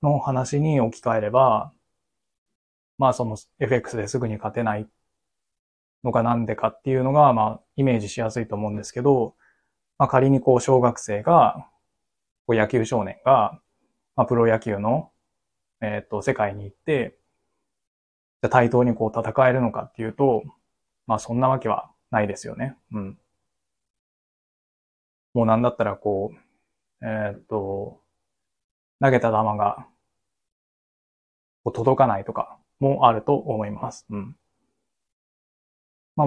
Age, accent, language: 20-39, native, Japanese